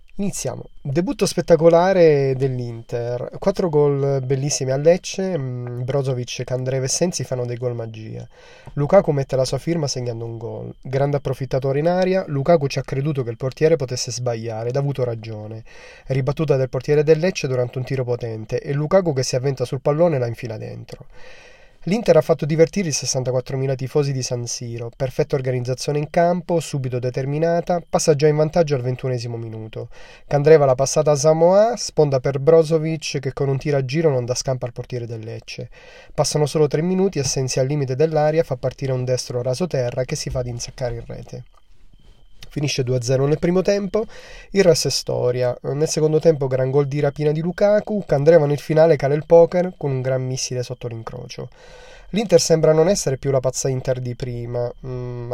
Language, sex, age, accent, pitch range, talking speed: Italian, male, 30-49, native, 125-160 Hz, 180 wpm